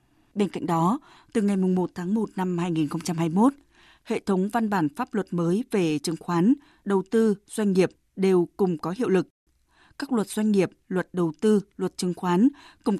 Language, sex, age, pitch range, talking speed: Vietnamese, female, 20-39, 175-220 Hz, 190 wpm